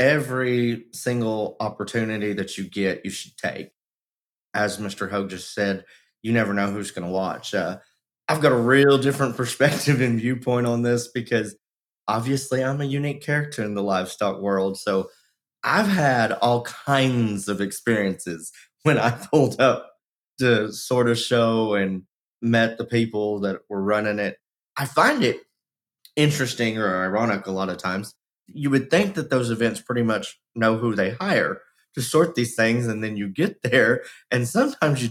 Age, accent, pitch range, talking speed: 20-39, American, 105-135 Hz, 165 wpm